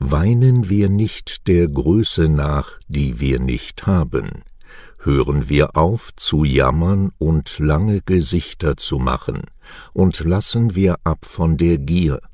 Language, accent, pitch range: English, German, 75-95 Hz